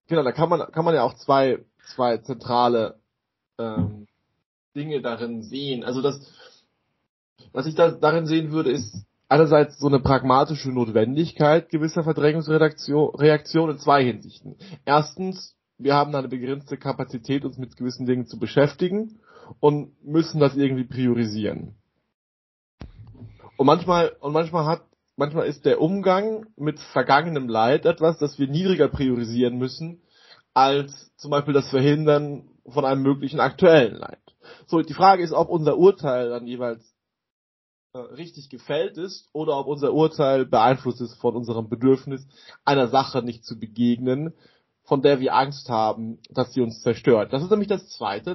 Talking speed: 150 wpm